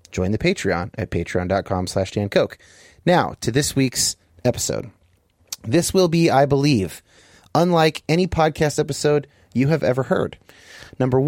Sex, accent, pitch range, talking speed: male, American, 110-155 Hz, 145 wpm